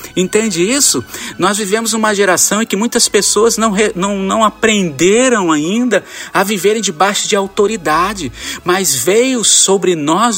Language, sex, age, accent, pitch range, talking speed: Portuguese, male, 50-69, Brazilian, 140-205 Hz, 135 wpm